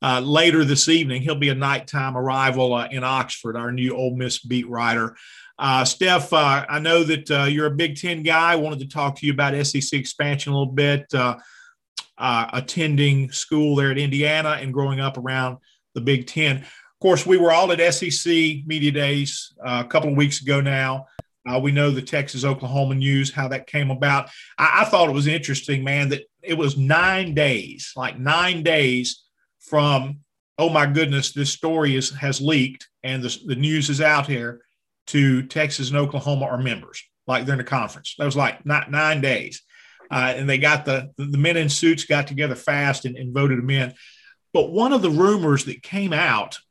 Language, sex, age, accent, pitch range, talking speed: English, male, 40-59, American, 130-150 Hz, 195 wpm